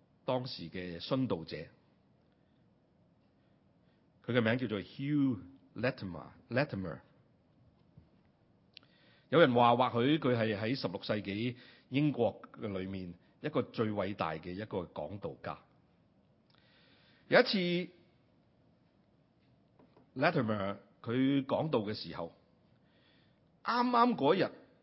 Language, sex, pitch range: Chinese, male, 105-150 Hz